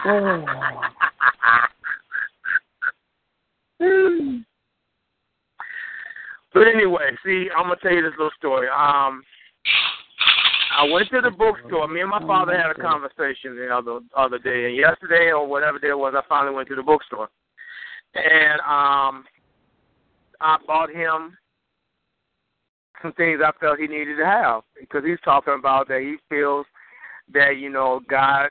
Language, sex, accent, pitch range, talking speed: English, male, American, 135-175 Hz, 135 wpm